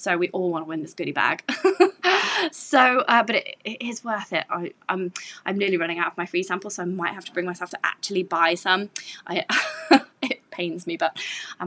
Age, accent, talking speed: 20-39, British, 215 wpm